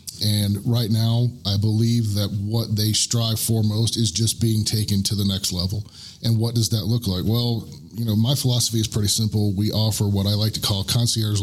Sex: male